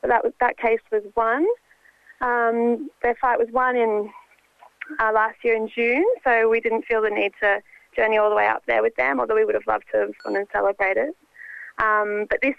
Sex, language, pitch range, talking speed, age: female, English, 210-245 Hz, 220 wpm, 20-39